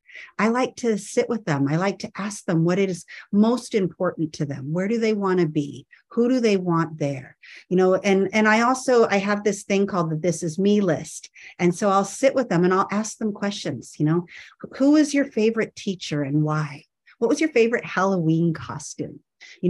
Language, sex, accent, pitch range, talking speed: English, female, American, 175-225 Hz, 215 wpm